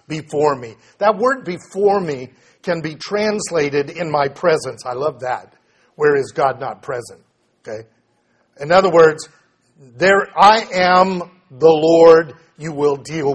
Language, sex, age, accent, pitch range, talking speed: English, male, 50-69, American, 140-180 Hz, 145 wpm